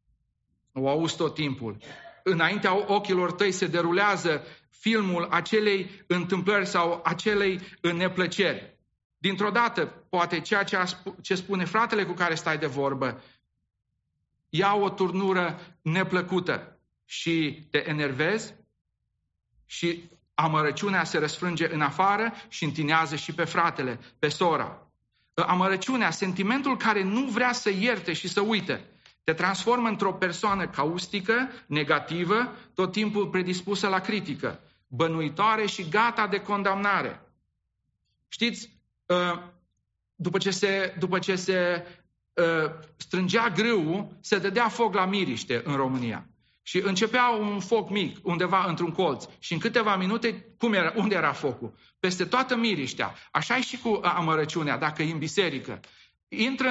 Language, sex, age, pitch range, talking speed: English, male, 40-59, 165-205 Hz, 125 wpm